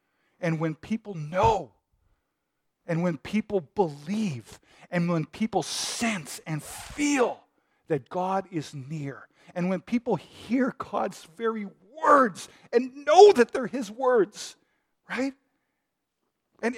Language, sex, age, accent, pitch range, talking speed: English, male, 40-59, American, 150-235 Hz, 120 wpm